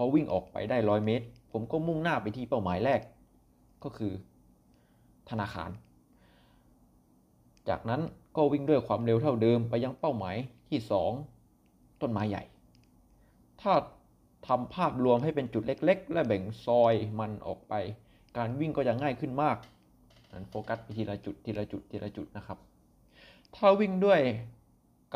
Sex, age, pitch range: male, 20-39, 90-120 Hz